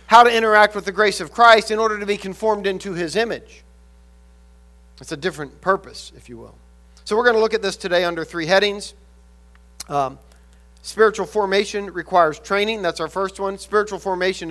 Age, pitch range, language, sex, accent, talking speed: 40-59, 145-225 Hz, English, male, American, 185 wpm